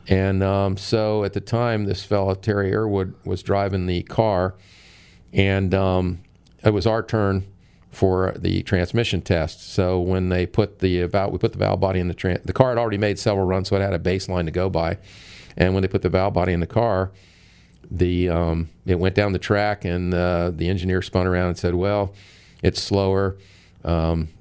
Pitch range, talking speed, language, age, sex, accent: 90-100 Hz, 205 wpm, English, 40-59, male, American